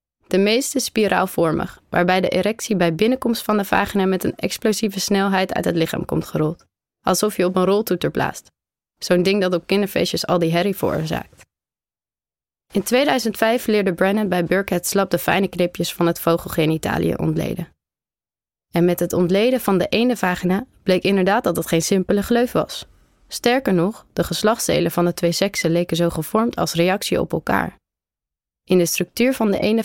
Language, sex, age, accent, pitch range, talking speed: Dutch, female, 20-39, Dutch, 175-205 Hz, 175 wpm